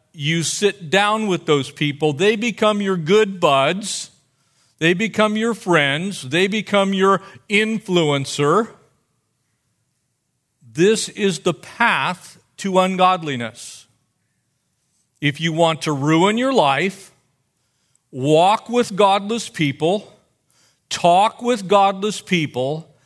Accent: American